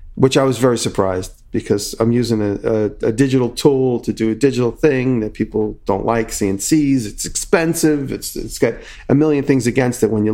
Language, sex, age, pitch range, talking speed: English, male, 40-59, 105-130 Hz, 205 wpm